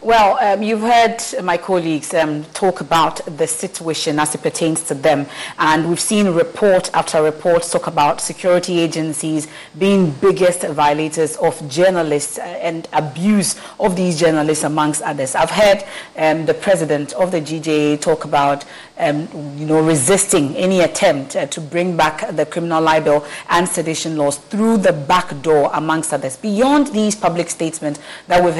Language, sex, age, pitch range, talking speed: English, female, 30-49, 155-185 Hz, 155 wpm